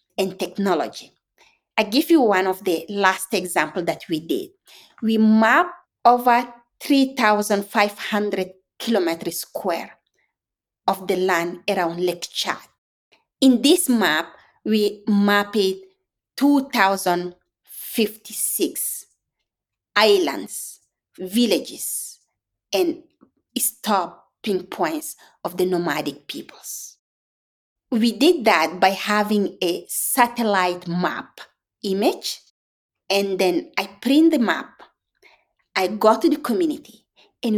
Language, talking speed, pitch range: English, 95 wpm, 195-290 Hz